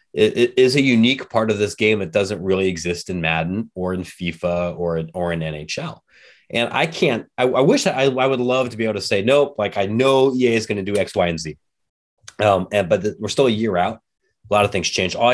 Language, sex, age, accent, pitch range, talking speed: English, male, 30-49, American, 90-120 Hz, 255 wpm